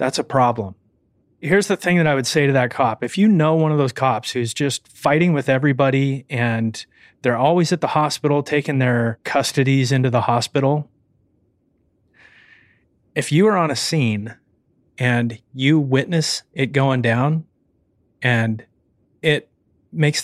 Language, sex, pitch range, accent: English, male, 115-150 Hz, American